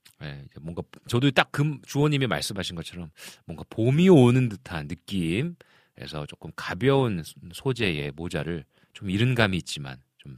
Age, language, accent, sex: 40-59, Korean, native, male